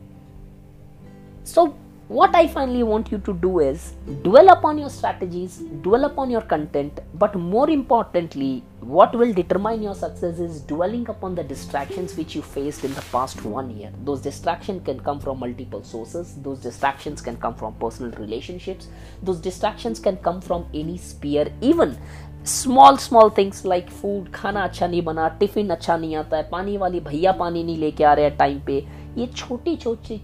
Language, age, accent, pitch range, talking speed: English, 20-39, Indian, 145-210 Hz, 165 wpm